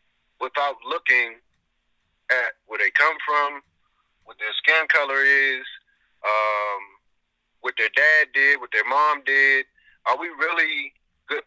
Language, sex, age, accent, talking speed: English, male, 30-49, American, 130 wpm